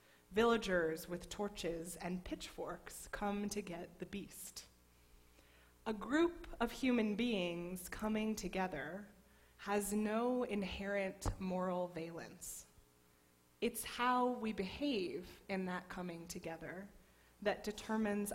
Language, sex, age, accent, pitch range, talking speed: English, female, 20-39, American, 175-245 Hz, 105 wpm